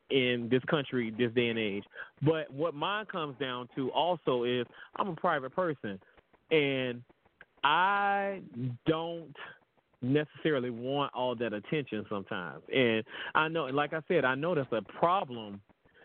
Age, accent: 30-49, American